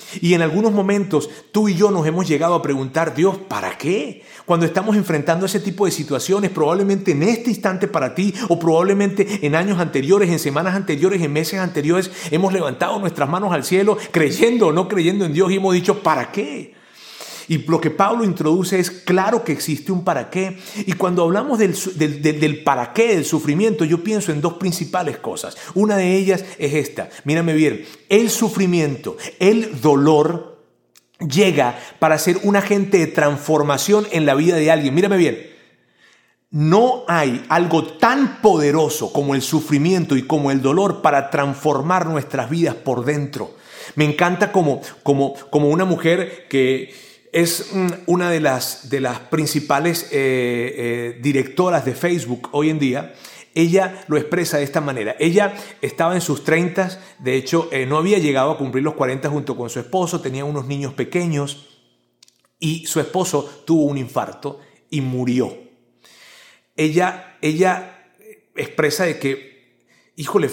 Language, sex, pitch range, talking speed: Spanish, male, 145-185 Hz, 165 wpm